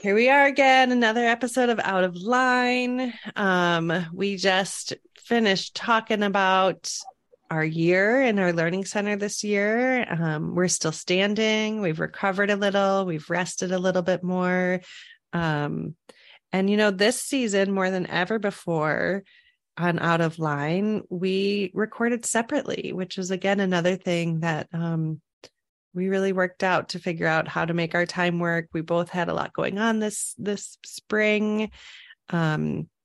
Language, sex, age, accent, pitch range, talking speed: English, female, 30-49, American, 175-215 Hz, 155 wpm